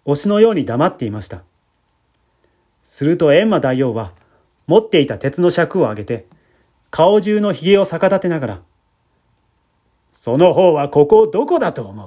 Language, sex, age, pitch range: Japanese, male, 30-49, 115-195 Hz